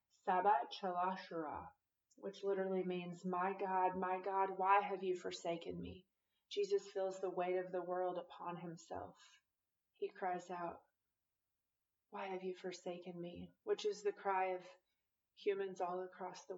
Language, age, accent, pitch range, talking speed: English, 30-49, American, 175-205 Hz, 140 wpm